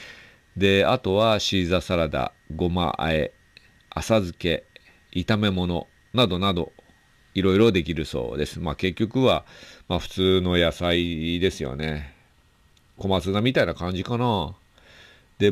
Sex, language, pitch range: male, Japanese, 85-110 Hz